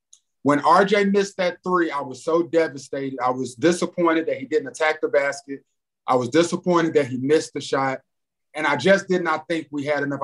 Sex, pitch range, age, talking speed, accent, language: male, 145-190 Hz, 30-49, 205 wpm, American, English